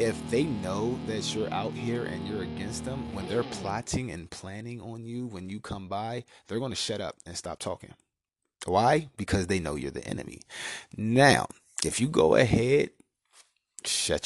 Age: 30-49